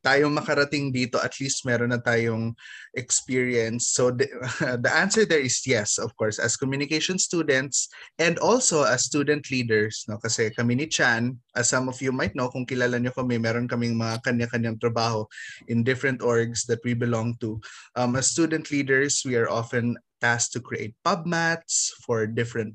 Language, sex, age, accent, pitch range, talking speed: Filipino, male, 20-39, native, 115-135 Hz, 175 wpm